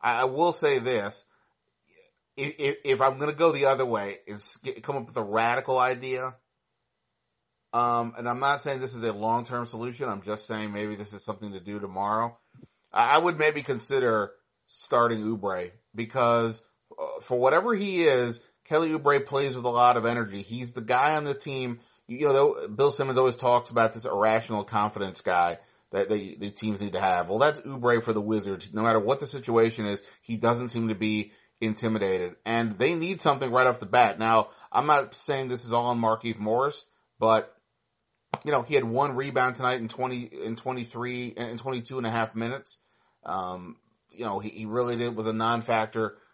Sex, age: male, 30-49